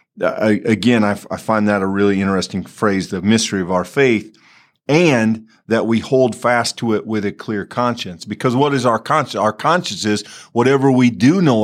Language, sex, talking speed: English, male, 200 wpm